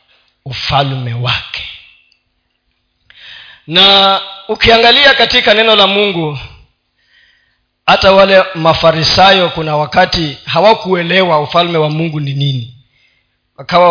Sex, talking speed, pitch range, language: male, 85 wpm, 135-180 Hz, Swahili